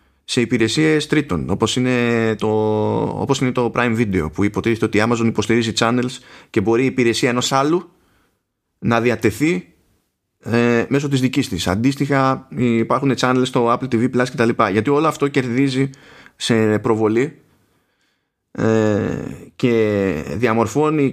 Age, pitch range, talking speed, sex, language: 30-49, 110-135 Hz, 130 wpm, male, Greek